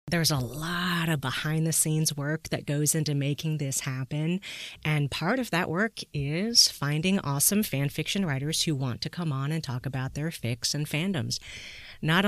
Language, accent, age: English, American, 30-49